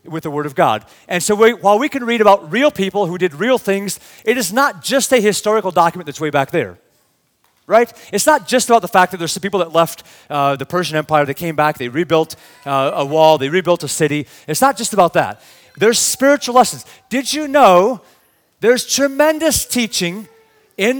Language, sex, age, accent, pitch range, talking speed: English, male, 30-49, American, 135-230 Hz, 210 wpm